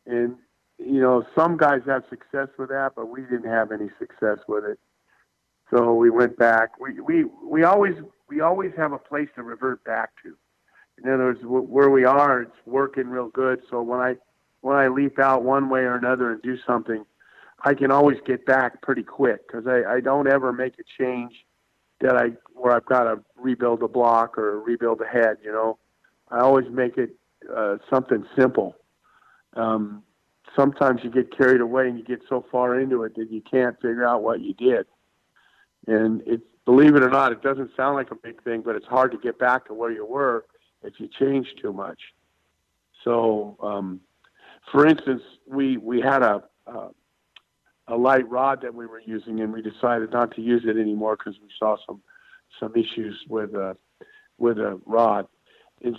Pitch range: 115-135 Hz